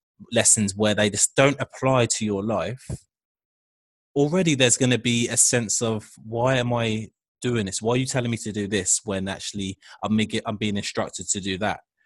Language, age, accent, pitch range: English, 20-39, British, 105-125 Hz